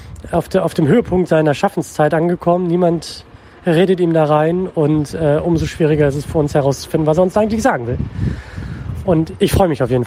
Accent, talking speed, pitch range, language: German, 205 wpm, 140-175 Hz, German